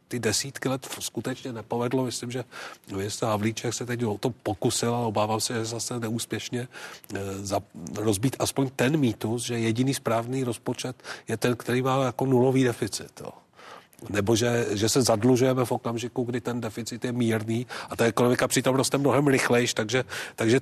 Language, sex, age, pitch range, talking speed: Czech, male, 40-59, 110-130 Hz, 165 wpm